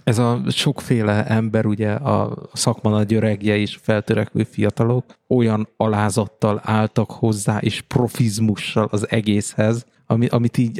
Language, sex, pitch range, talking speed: Hungarian, male, 110-135 Hz, 130 wpm